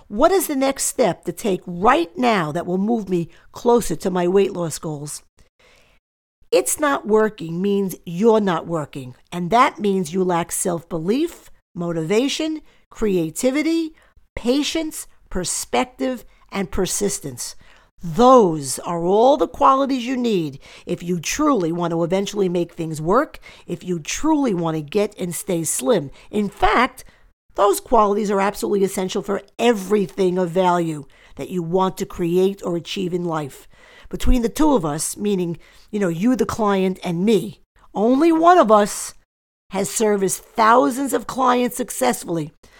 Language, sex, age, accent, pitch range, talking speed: English, female, 50-69, American, 175-235 Hz, 150 wpm